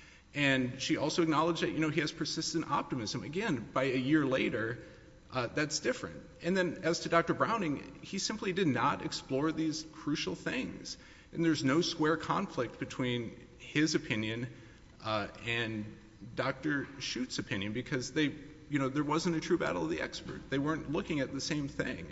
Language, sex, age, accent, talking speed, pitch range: English, male, 40-59, American, 175 wpm, 110-155 Hz